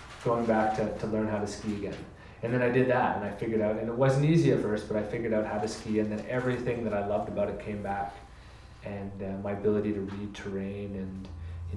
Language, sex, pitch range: English, male, 100-115 Hz